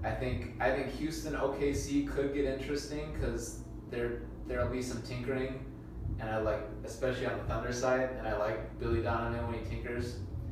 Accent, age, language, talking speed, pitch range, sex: American, 20-39, English, 175 wpm, 100-115 Hz, male